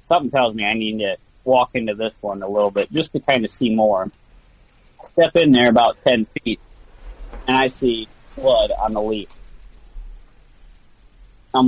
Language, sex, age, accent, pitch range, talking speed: English, male, 30-49, American, 105-120 Hz, 170 wpm